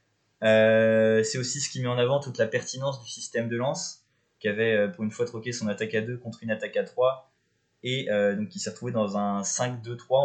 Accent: French